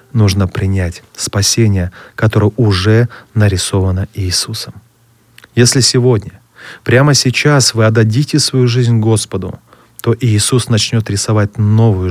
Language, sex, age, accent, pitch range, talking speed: Russian, male, 30-49, native, 100-120 Hz, 105 wpm